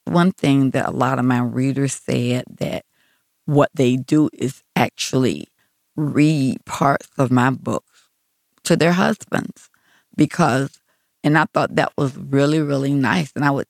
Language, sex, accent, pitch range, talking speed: English, female, American, 130-155 Hz, 155 wpm